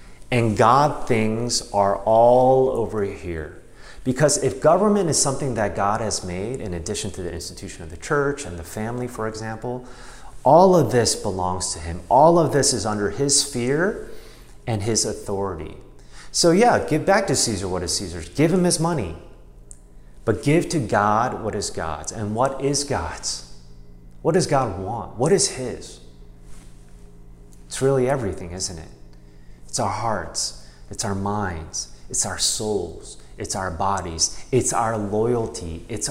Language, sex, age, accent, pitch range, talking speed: English, male, 30-49, American, 80-120 Hz, 160 wpm